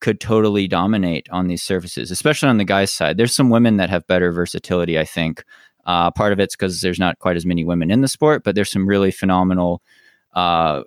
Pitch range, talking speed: 90-105 Hz, 220 wpm